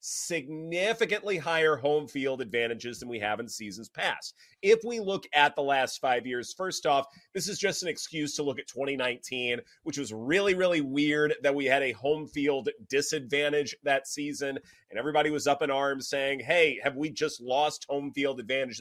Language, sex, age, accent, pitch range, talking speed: English, male, 30-49, American, 125-180 Hz, 190 wpm